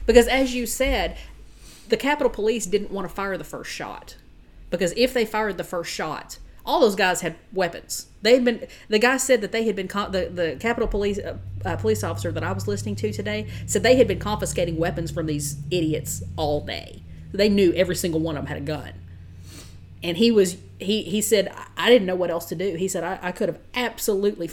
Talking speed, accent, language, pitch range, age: 225 wpm, American, English, 155-210 Hz, 40-59